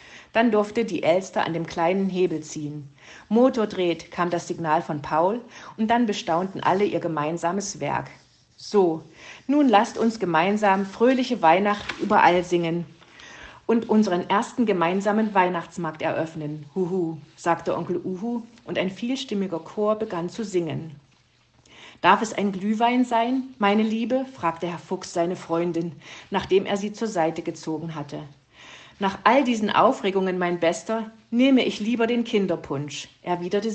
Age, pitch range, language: 50-69, 165-220 Hz, German